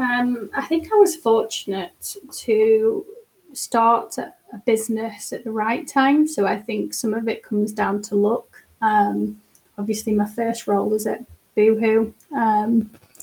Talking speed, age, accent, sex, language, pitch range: 150 wpm, 10-29, British, female, English, 210-235 Hz